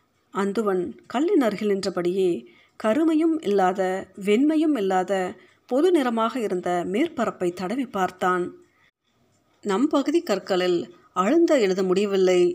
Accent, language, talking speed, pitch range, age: native, Tamil, 85 wpm, 180-255 Hz, 50-69